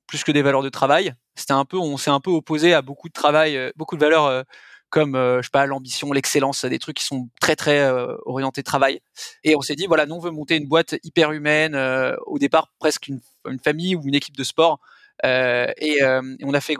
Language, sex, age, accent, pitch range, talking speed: French, male, 20-39, French, 145-170 Hz, 230 wpm